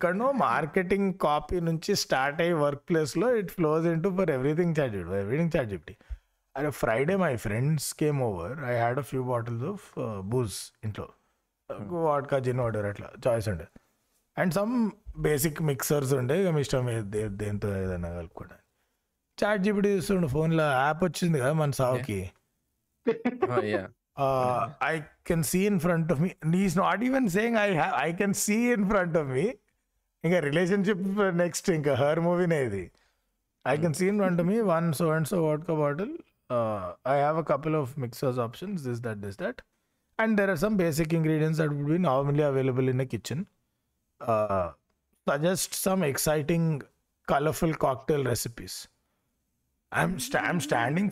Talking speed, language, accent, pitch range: 130 wpm, Telugu, native, 125-185 Hz